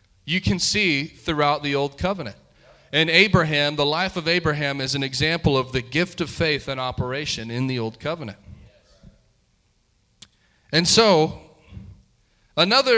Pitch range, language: 140-210 Hz, English